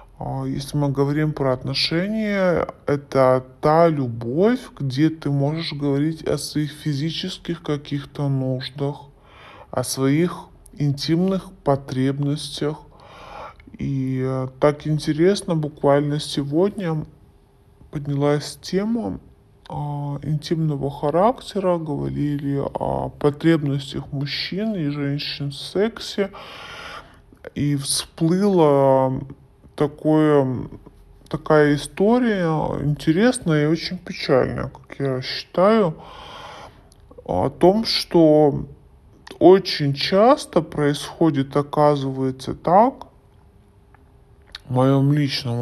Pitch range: 135-165 Hz